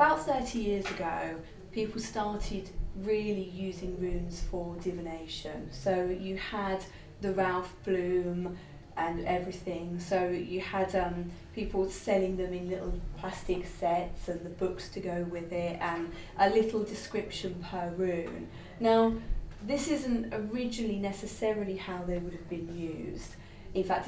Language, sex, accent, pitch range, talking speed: English, female, British, 175-210 Hz, 140 wpm